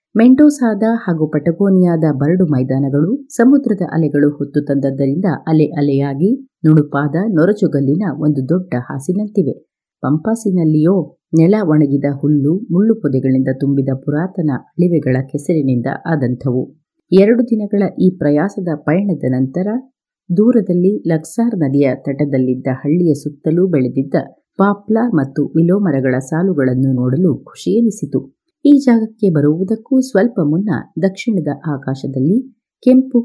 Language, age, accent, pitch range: Kannada, 30-49, native, 140-195 Hz